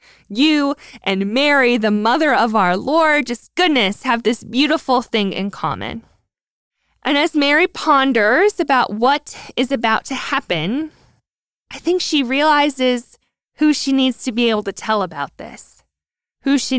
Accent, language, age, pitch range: American, English, 20-39, 200-265 Hz